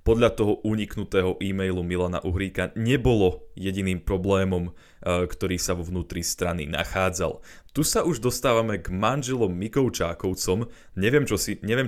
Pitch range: 90-110 Hz